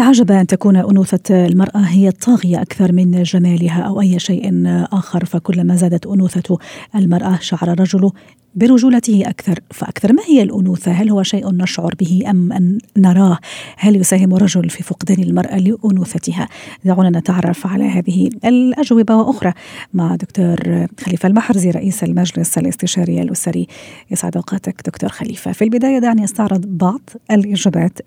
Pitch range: 180-205 Hz